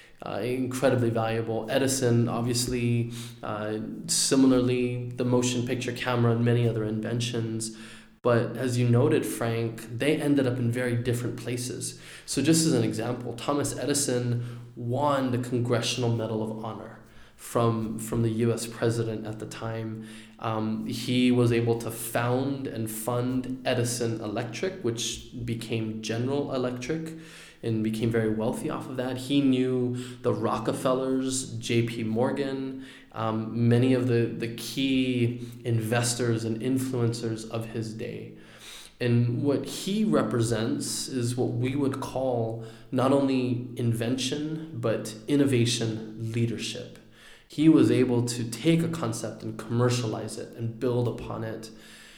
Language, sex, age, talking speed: English, male, 20-39, 135 wpm